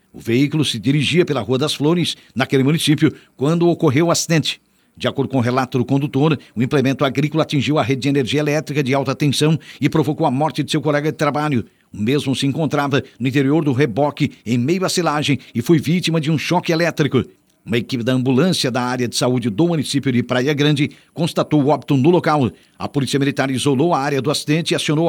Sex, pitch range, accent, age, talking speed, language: male, 130-155 Hz, Brazilian, 50-69, 215 wpm, Portuguese